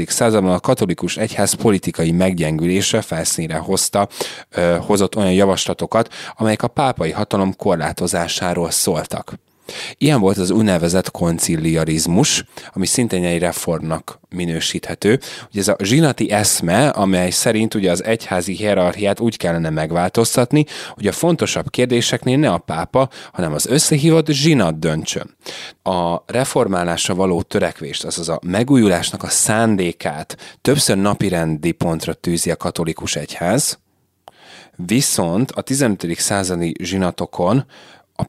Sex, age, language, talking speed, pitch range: male, 30-49, Hungarian, 115 wpm, 85-115 Hz